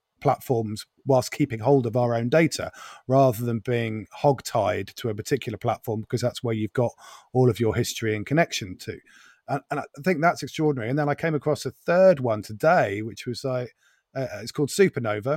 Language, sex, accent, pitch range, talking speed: English, male, British, 110-135 Hz, 190 wpm